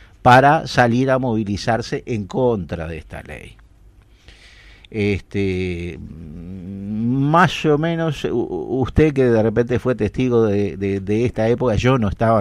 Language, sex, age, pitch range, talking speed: Spanish, male, 50-69, 100-135 Hz, 130 wpm